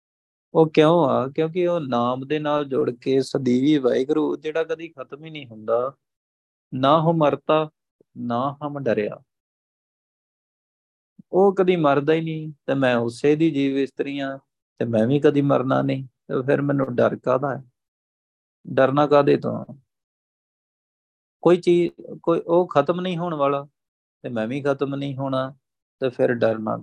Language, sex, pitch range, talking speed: Punjabi, male, 115-150 Hz, 145 wpm